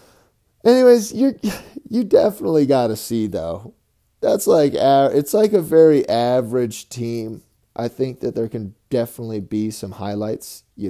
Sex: male